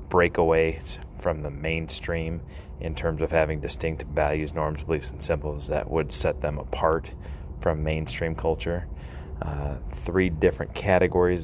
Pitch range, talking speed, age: 75-80 Hz, 140 wpm, 30-49